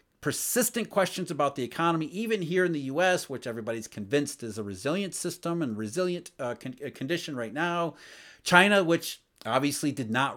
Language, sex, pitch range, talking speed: English, male, 135-195 Hz, 160 wpm